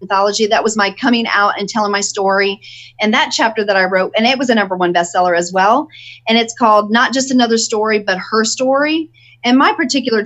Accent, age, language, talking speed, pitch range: American, 40-59, English, 220 wpm, 185-225 Hz